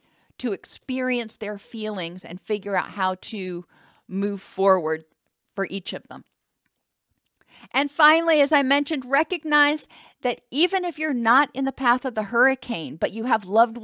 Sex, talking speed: female, 155 wpm